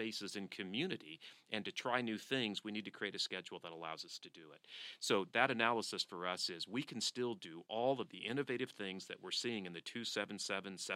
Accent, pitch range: American, 95-115 Hz